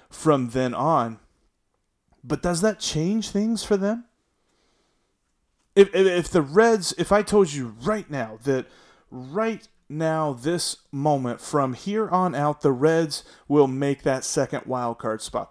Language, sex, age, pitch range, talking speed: English, male, 30-49, 125-165 Hz, 150 wpm